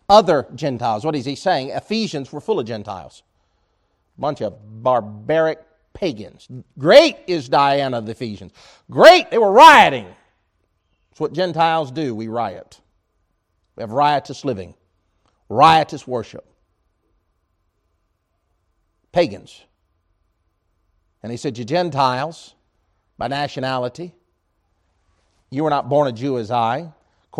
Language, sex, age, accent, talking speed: English, male, 50-69, American, 120 wpm